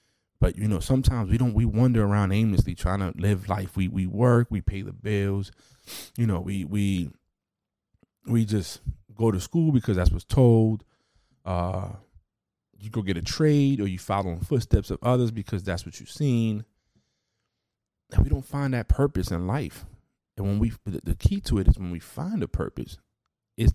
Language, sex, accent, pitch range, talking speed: English, male, American, 85-110 Hz, 190 wpm